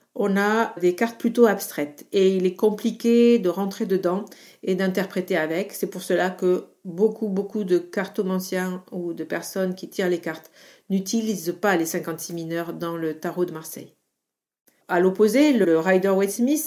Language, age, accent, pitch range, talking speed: French, 50-69, French, 180-225 Hz, 165 wpm